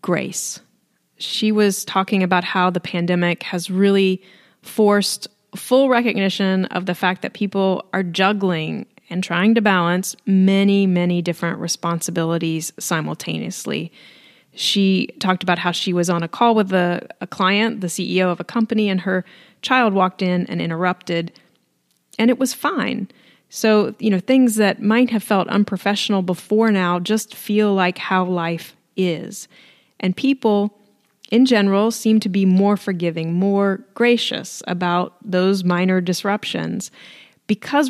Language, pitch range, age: English, 180-215 Hz, 30-49